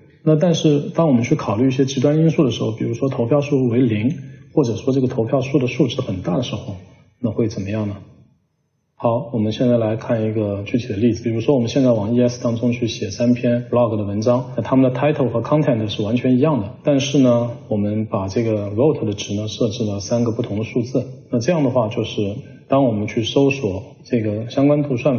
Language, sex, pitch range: Chinese, male, 115-140 Hz